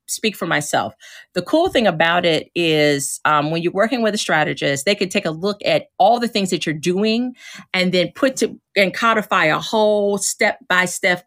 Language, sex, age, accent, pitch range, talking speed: English, female, 40-59, American, 170-230 Hz, 195 wpm